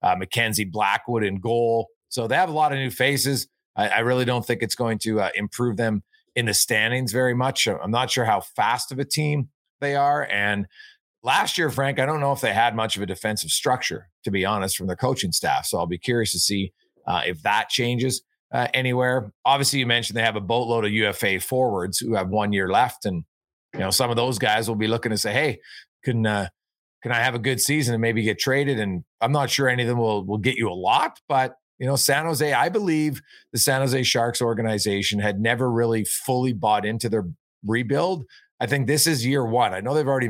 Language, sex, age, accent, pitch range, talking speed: English, male, 40-59, American, 105-130 Hz, 230 wpm